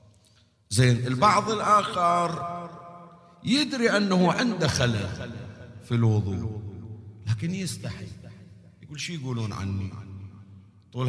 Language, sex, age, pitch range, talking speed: Arabic, male, 50-69, 115-170 Hz, 85 wpm